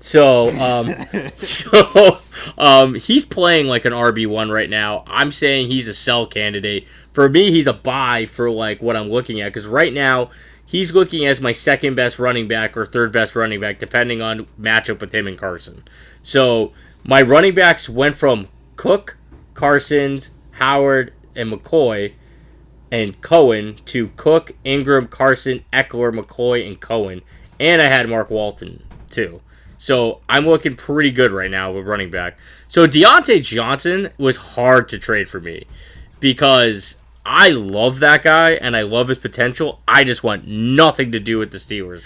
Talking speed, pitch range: 165 wpm, 105-135 Hz